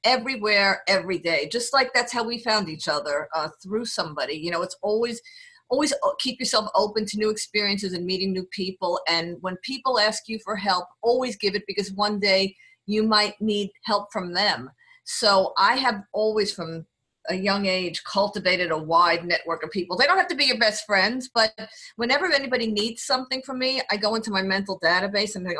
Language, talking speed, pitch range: English, 200 wpm, 180-235 Hz